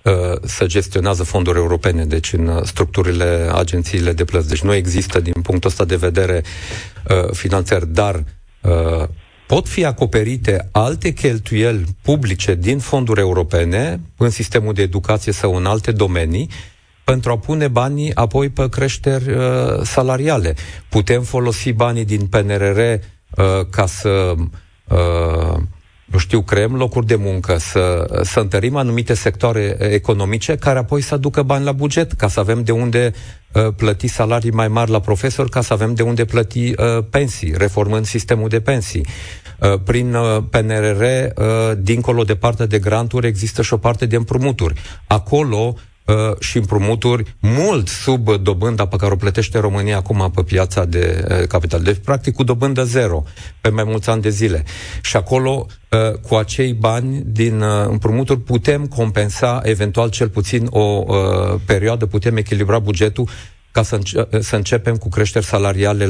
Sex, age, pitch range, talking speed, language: male, 40-59, 95-120 Hz, 145 wpm, Romanian